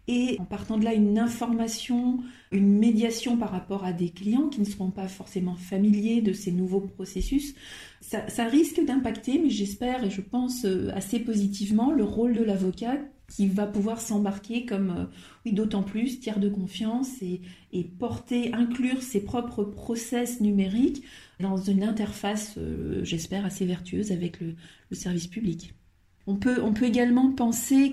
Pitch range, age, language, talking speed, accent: 195-235 Hz, 40-59, French, 160 wpm, French